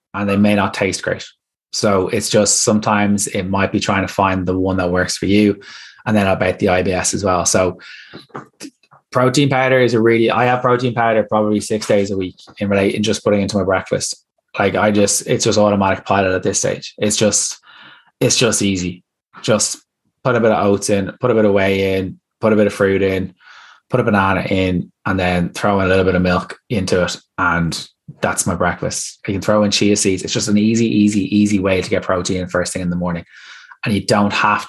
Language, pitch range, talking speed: English, 95-105 Hz, 225 wpm